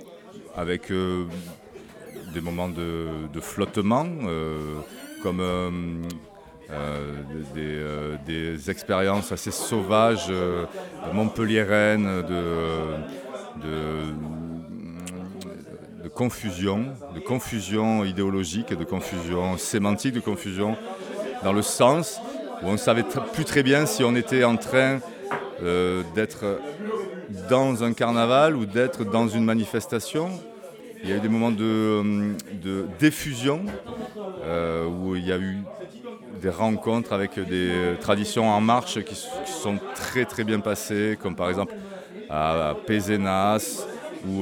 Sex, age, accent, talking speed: male, 30-49, French, 120 wpm